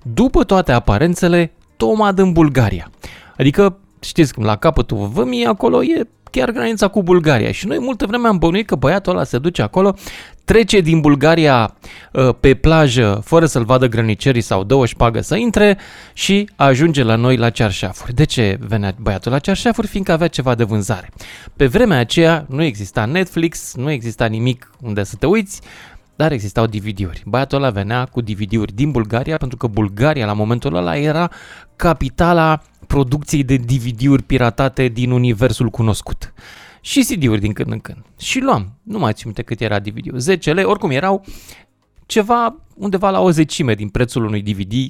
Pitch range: 110-175 Hz